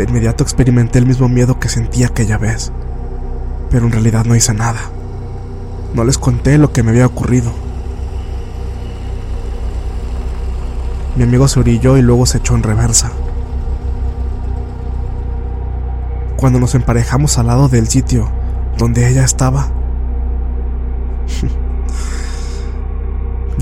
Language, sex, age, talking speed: Spanish, male, 20-39, 115 wpm